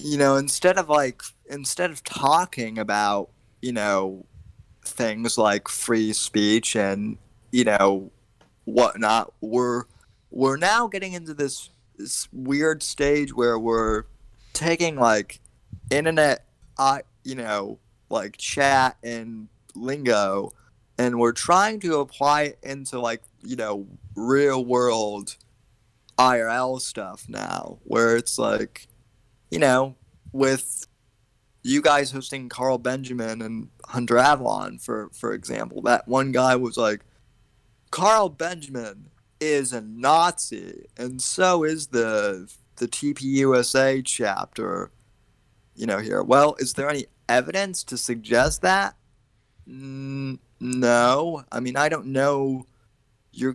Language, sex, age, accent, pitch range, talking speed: English, male, 20-39, American, 115-135 Hz, 120 wpm